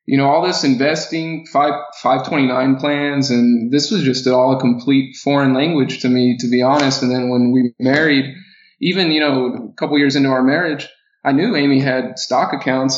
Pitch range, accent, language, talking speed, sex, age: 130-145 Hz, American, English, 200 wpm, male, 20-39